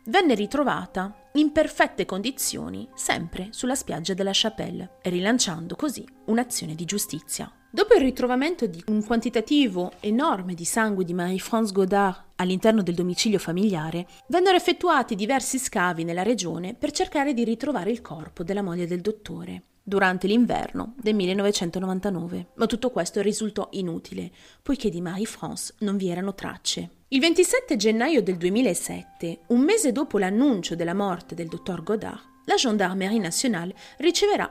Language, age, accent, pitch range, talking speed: Italian, 30-49, native, 180-255 Hz, 140 wpm